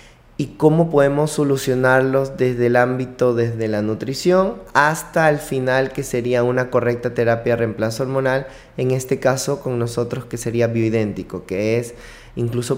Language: Spanish